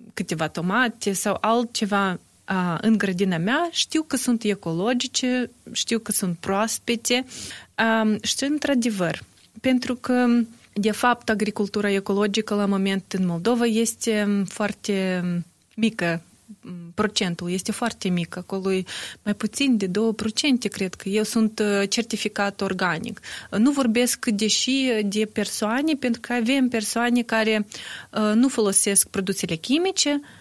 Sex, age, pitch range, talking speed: female, 20-39, 200-245 Hz, 120 wpm